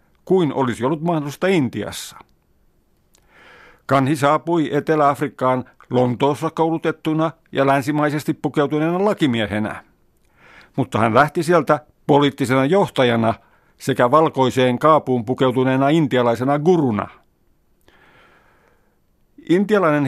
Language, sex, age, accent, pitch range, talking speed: Finnish, male, 50-69, native, 125-160 Hz, 80 wpm